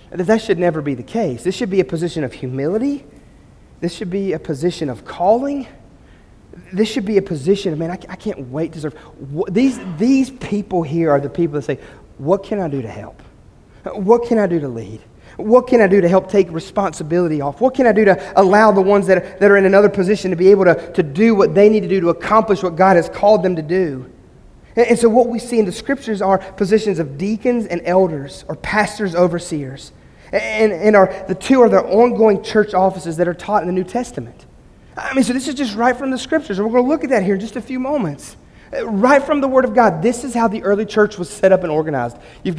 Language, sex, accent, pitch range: English, male, American, 170-230 Hz